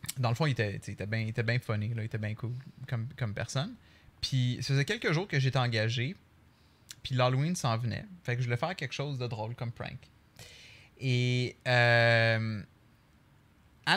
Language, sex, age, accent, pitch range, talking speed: French, male, 20-39, Canadian, 115-135 Hz, 195 wpm